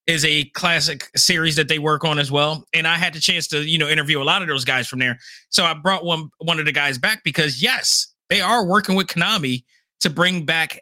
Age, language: 30-49, English